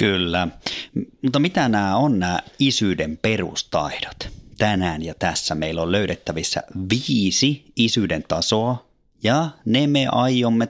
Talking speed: 120 wpm